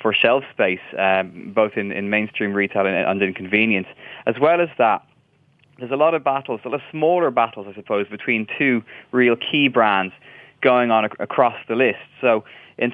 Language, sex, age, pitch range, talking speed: English, male, 20-39, 105-130 Hz, 190 wpm